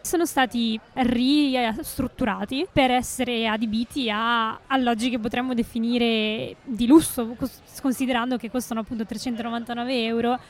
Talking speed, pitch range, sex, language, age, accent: 110 wpm, 225-260 Hz, female, Italian, 20-39, native